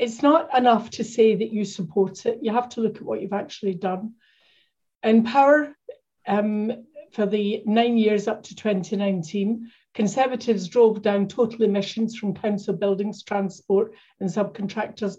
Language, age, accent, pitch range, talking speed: English, 50-69, British, 195-230 Hz, 155 wpm